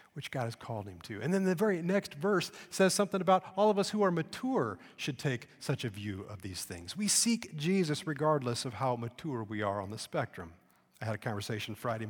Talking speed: 230 wpm